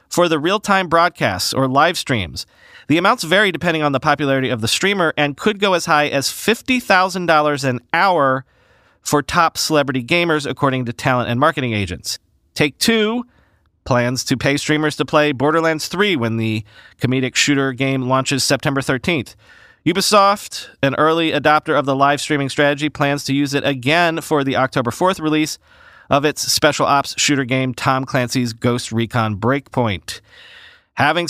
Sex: male